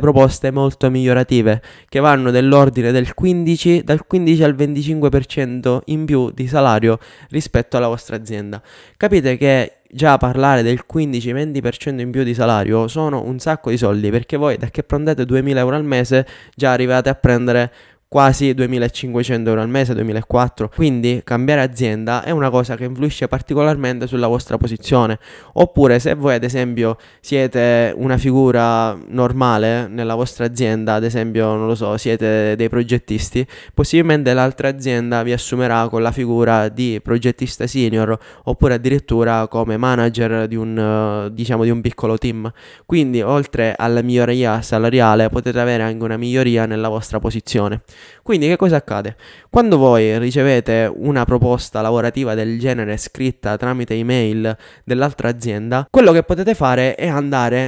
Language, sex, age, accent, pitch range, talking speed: Italian, male, 20-39, native, 115-135 Hz, 150 wpm